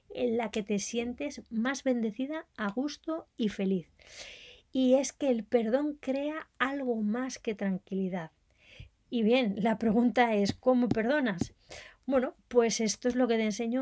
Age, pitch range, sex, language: 20-39, 205-255 Hz, female, Spanish